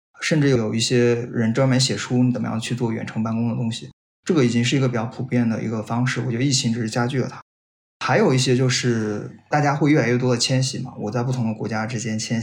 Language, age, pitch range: Chinese, 20-39, 115-135 Hz